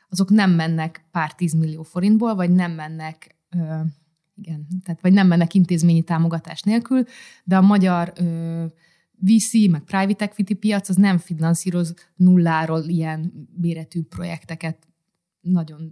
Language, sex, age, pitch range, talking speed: Hungarian, female, 20-39, 165-200 Hz, 130 wpm